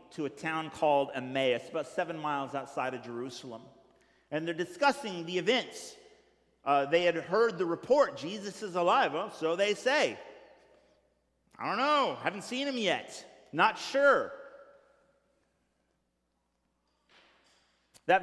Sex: male